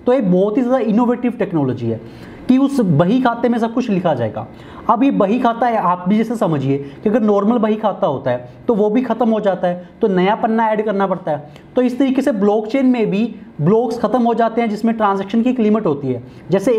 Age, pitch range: 30-49, 165-230 Hz